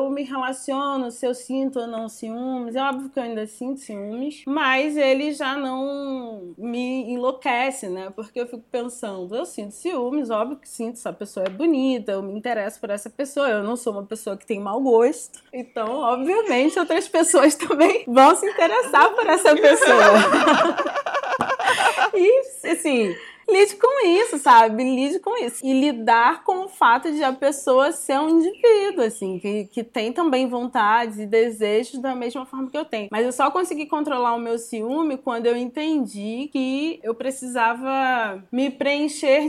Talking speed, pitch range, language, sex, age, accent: 170 wpm, 230-300 Hz, Portuguese, female, 20-39, Brazilian